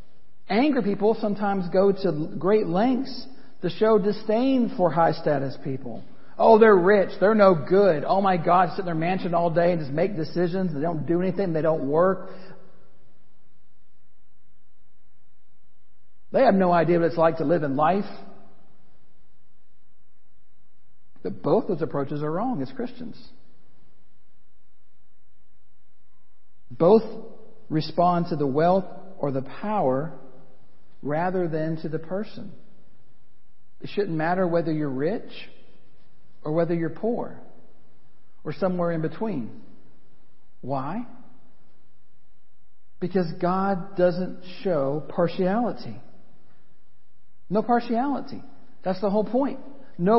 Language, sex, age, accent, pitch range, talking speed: English, male, 50-69, American, 170-215 Hz, 115 wpm